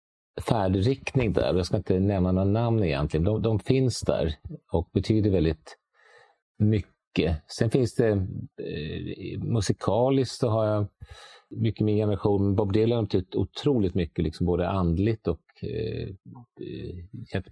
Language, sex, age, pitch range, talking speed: English, male, 50-69, 90-115 Hz, 125 wpm